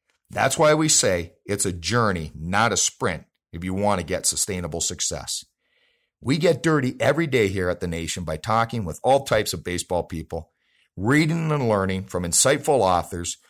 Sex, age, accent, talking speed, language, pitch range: male, 40-59, American, 180 wpm, English, 90-140 Hz